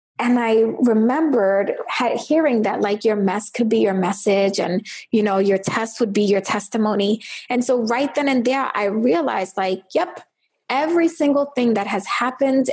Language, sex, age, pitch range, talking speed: English, female, 20-39, 210-275 Hz, 175 wpm